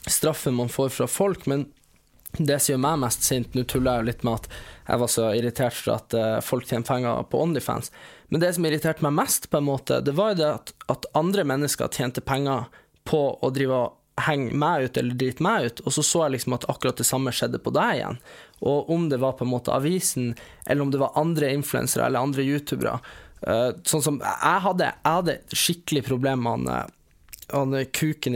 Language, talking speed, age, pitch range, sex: English, 195 wpm, 20-39, 125-155 Hz, male